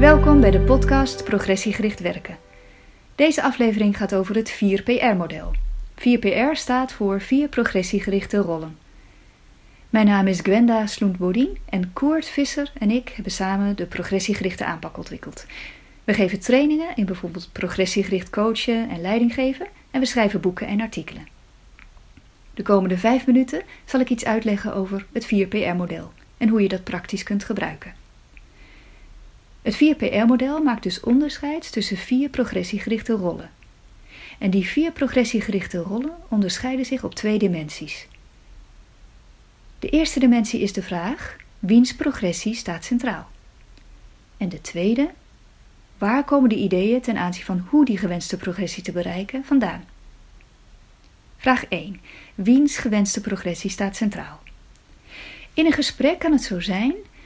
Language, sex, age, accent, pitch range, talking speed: Dutch, female, 30-49, Dutch, 195-255 Hz, 135 wpm